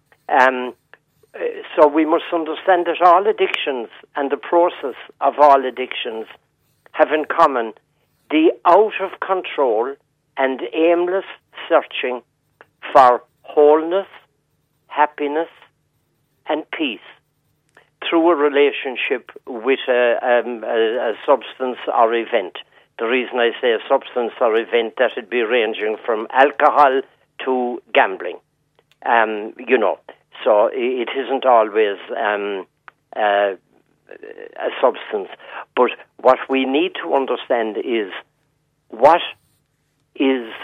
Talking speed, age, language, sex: 110 wpm, 50-69, English, male